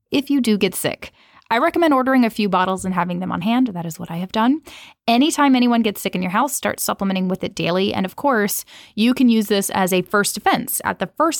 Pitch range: 185-235 Hz